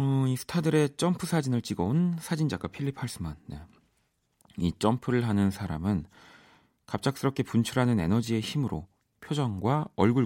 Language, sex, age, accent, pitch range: Korean, male, 40-59, native, 85-120 Hz